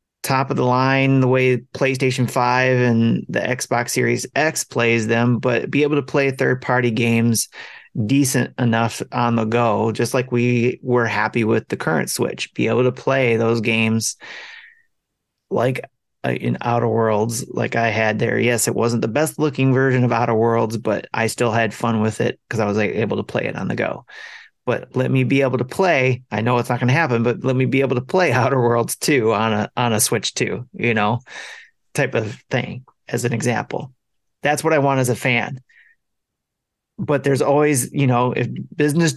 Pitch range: 115-135 Hz